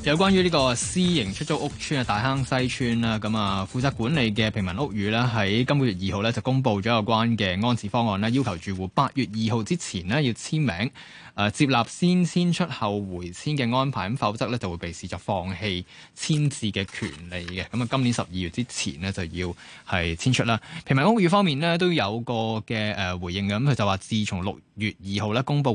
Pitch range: 100-135 Hz